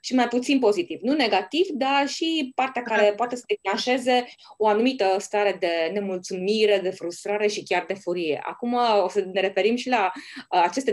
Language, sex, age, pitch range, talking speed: Romanian, female, 20-39, 195-275 Hz, 175 wpm